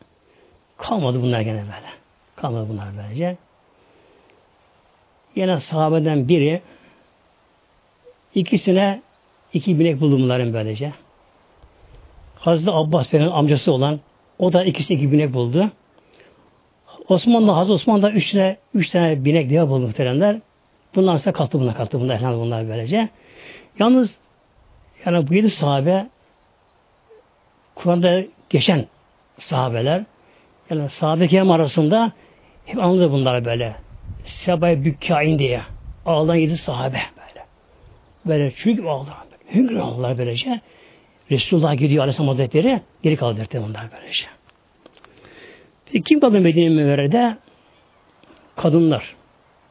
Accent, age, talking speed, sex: native, 60-79, 100 wpm, male